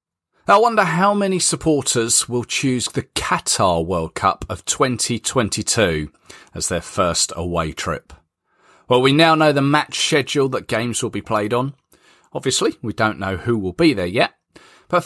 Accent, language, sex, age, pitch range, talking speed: British, English, male, 40-59, 95-145 Hz, 165 wpm